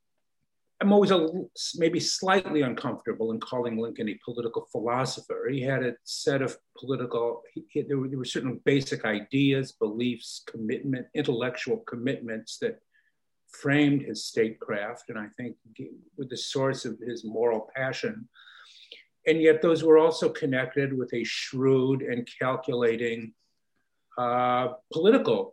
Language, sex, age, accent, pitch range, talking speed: English, male, 50-69, American, 115-150 Hz, 135 wpm